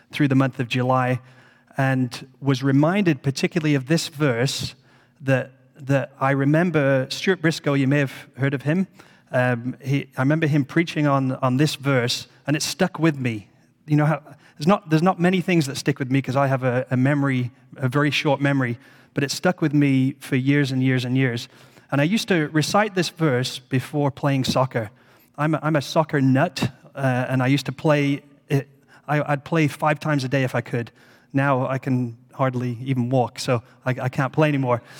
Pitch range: 130-155 Hz